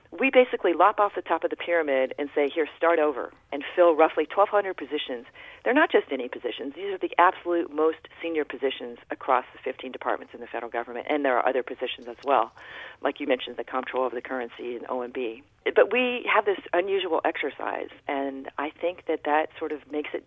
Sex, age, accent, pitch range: female, 40-59, American, 135-170 Hz